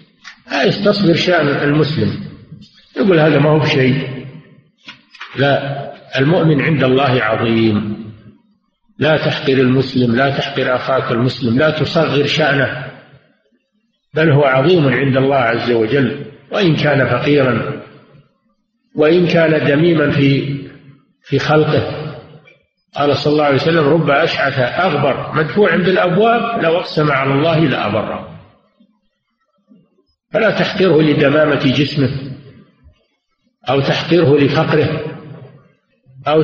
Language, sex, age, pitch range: Arabic, male, 50-69, 140-175 Hz